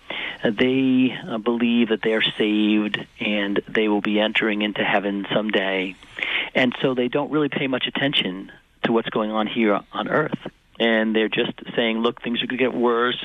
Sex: male